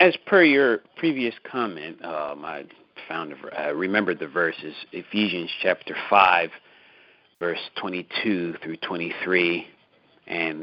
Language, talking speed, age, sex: English, 115 wpm, 50-69, male